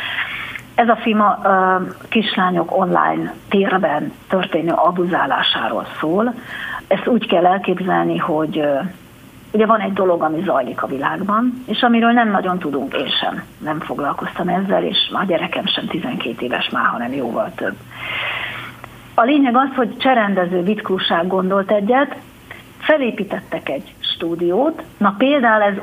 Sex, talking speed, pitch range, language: female, 130 wpm, 180-235 Hz, Hungarian